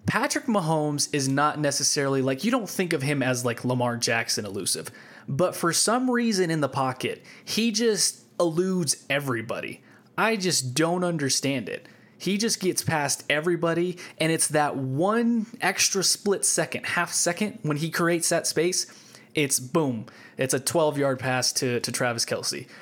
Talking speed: 165 wpm